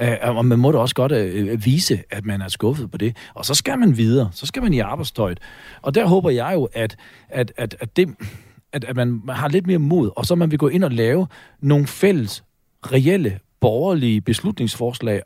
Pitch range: 115-160 Hz